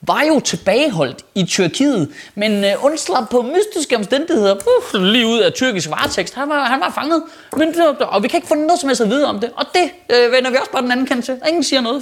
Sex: male